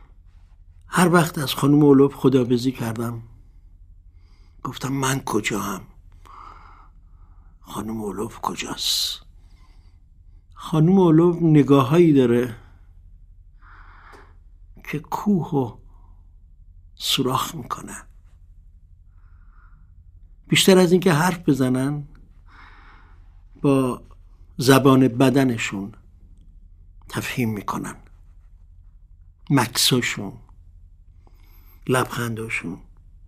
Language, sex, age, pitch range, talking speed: Persian, male, 60-79, 85-135 Hz, 65 wpm